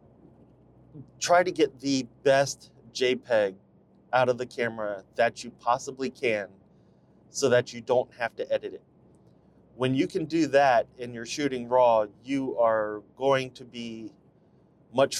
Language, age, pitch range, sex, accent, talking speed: English, 30-49, 110-135 Hz, male, American, 145 wpm